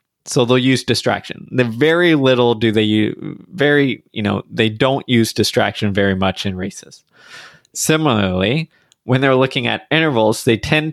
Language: English